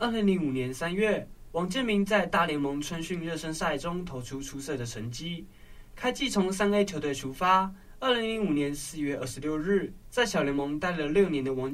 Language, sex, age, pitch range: Chinese, male, 20-39, 125-195 Hz